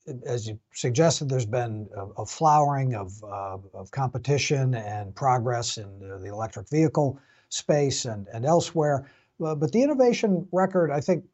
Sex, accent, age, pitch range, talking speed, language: male, American, 60-79, 115-145 Hz, 150 wpm, English